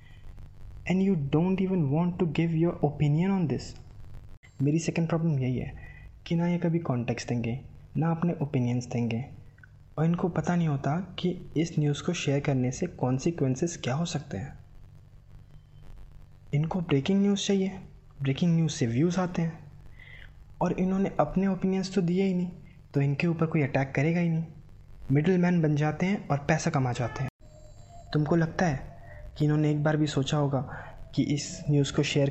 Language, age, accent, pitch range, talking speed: Hindi, 20-39, native, 125-160 Hz, 175 wpm